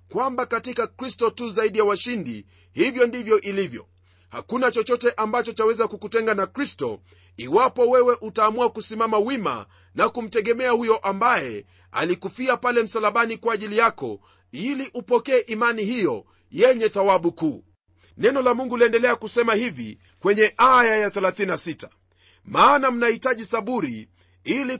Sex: male